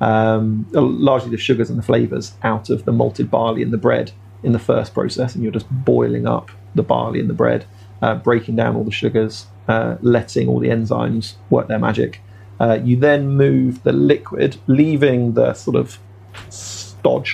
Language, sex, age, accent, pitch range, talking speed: English, male, 30-49, British, 100-125 Hz, 185 wpm